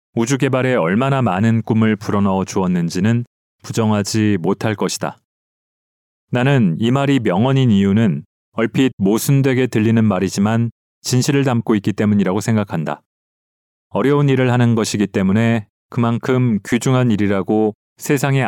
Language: Korean